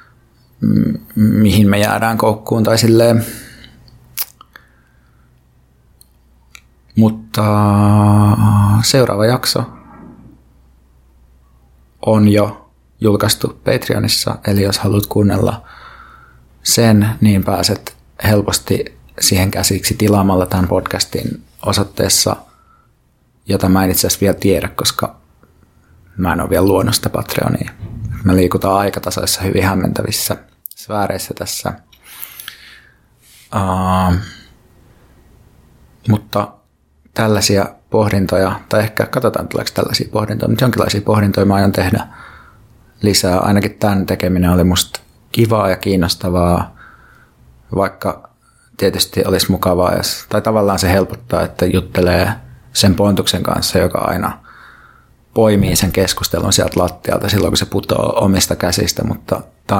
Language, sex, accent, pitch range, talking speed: Finnish, male, native, 90-110 Hz, 100 wpm